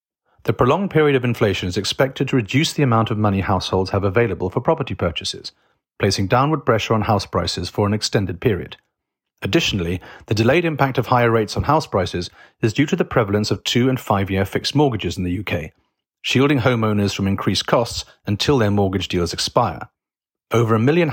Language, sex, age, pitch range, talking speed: English, male, 40-59, 95-130 Hz, 190 wpm